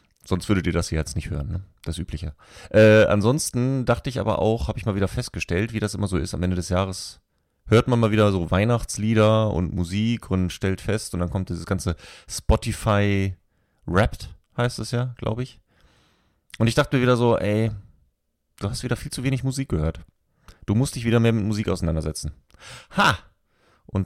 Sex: male